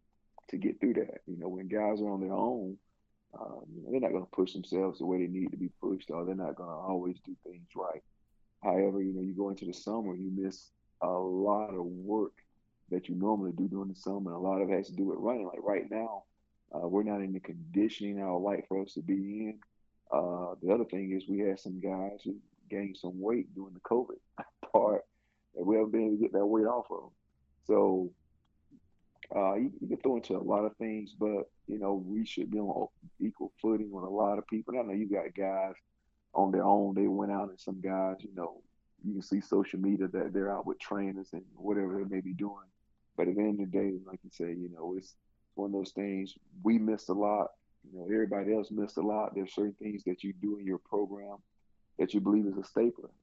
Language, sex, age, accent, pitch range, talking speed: English, male, 40-59, American, 95-105 Hz, 235 wpm